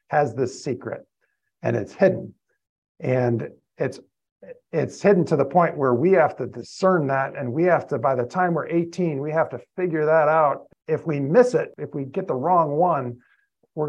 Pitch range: 125-160 Hz